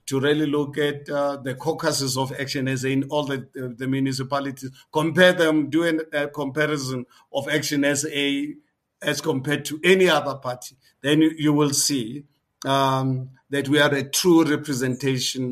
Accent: South African